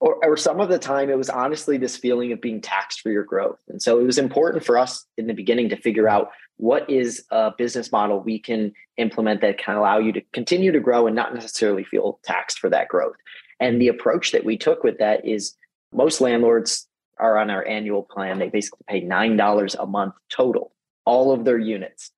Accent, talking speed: American, 220 wpm